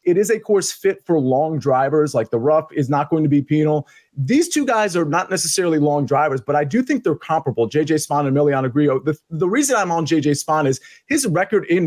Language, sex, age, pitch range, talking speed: English, male, 30-49, 145-185 Hz, 240 wpm